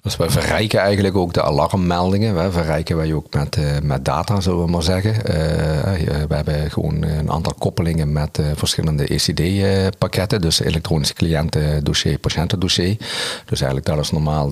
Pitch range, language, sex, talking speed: 75-90 Hz, Dutch, male, 155 wpm